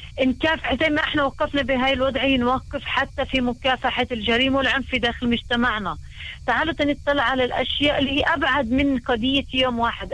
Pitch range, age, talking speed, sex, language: 240-290 Hz, 30-49, 160 wpm, female, Hebrew